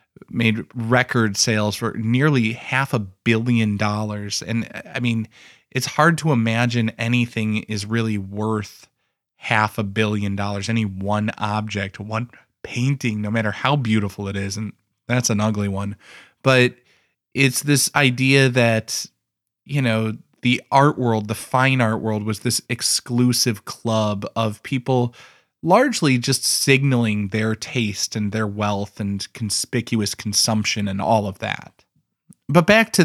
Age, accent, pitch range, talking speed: 20-39, American, 105-135 Hz, 140 wpm